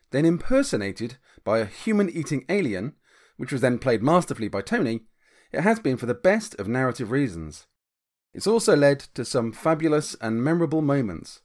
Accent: British